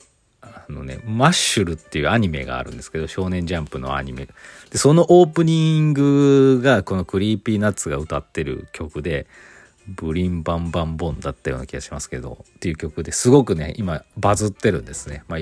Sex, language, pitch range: male, Japanese, 85-120 Hz